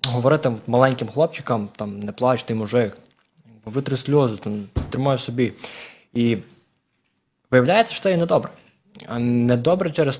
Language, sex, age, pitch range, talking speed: English, male, 20-39, 115-150 Hz, 125 wpm